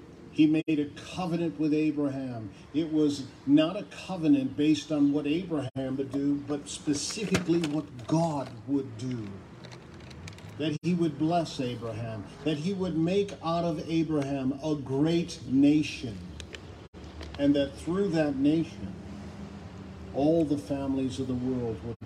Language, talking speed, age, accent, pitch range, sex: English, 135 wpm, 50-69, American, 95-150 Hz, male